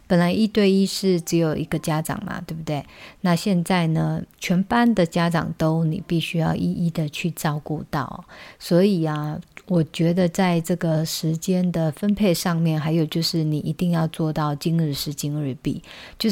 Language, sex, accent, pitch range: Chinese, female, native, 160-185 Hz